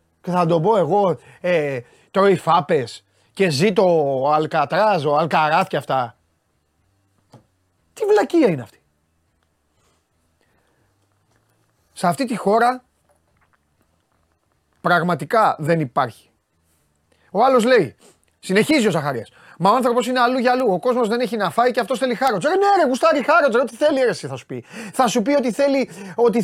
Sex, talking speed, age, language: male, 150 wpm, 30-49, Greek